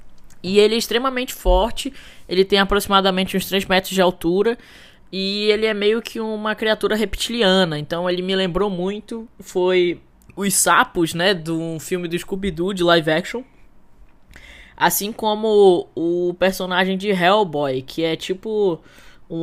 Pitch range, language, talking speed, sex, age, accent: 170-200 Hz, English, 145 wpm, female, 10-29, Brazilian